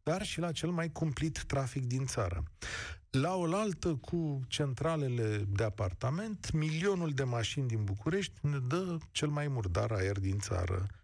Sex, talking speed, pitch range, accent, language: male, 150 wpm, 110-155 Hz, native, Romanian